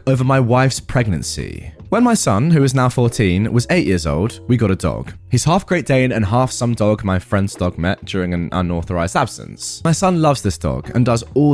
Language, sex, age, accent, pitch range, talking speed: English, male, 20-39, British, 100-145 Hz, 225 wpm